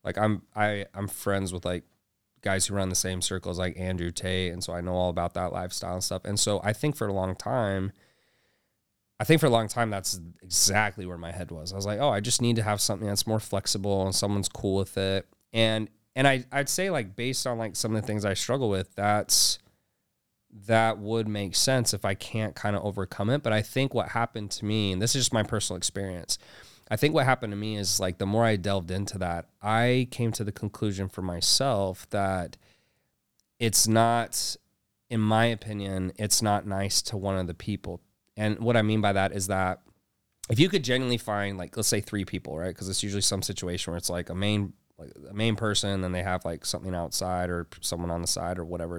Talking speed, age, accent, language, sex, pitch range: 230 wpm, 20-39, American, English, male, 95-110 Hz